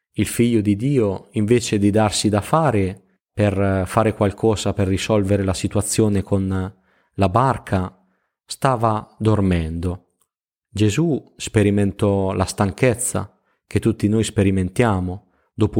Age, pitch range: 20-39, 95-115 Hz